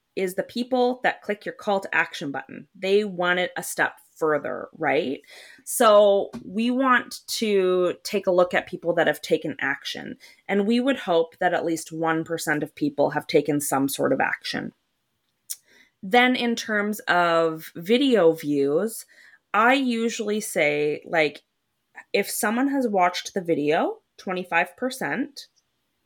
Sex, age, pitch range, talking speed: female, 20-39, 165-225 Hz, 145 wpm